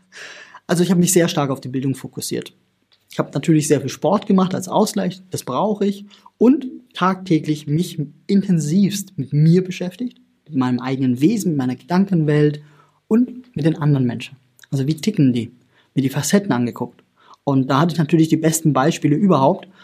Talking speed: 175 wpm